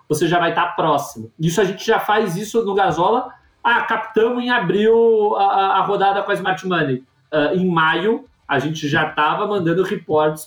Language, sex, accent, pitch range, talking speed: Portuguese, male, Brazilian, 140-190 Hz, 185 wpm